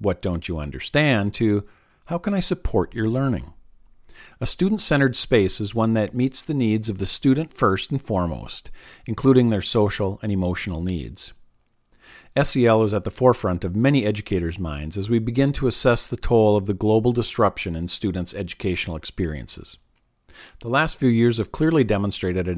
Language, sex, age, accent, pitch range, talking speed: English, male, 50-69, American, 95-130 Hz, 170 wpm